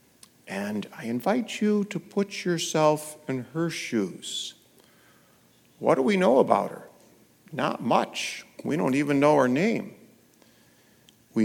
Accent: American